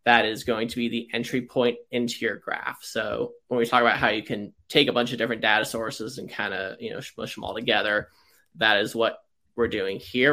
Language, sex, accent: English, male, American